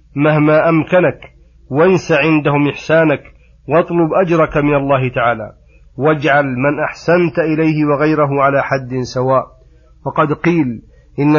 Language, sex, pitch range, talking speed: Arabic, male, 135-160 Hz, 110 wpm